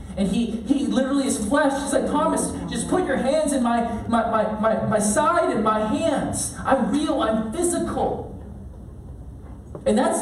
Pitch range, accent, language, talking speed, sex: 185-255 Hz, American, English, 170 wpm, male